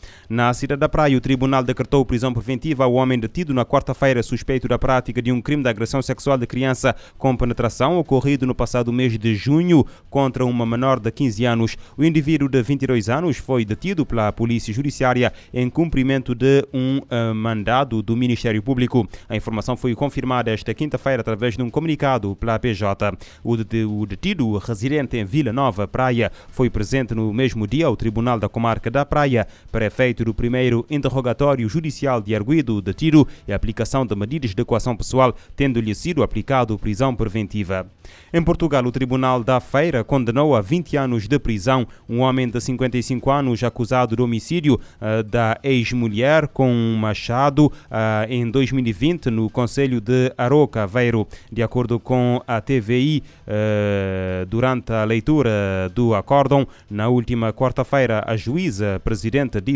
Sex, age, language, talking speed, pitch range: male, 20-39, Portuguese, 160 wpm, 115-135 Hz